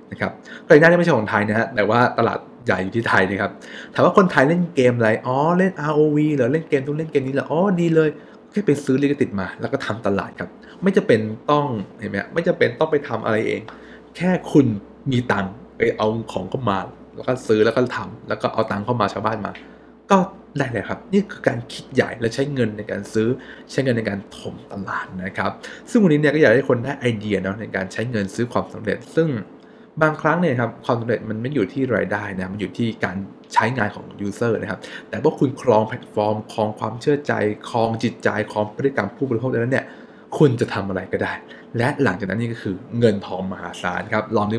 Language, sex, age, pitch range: English, male, 20-39, 105-145 Hz